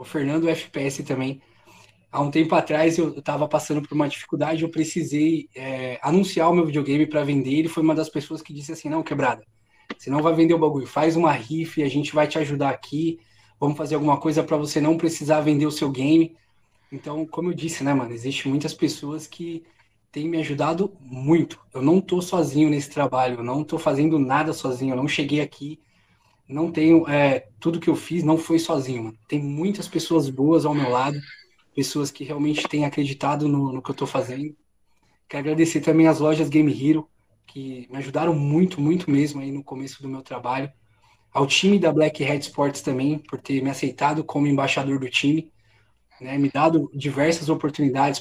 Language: Portuguese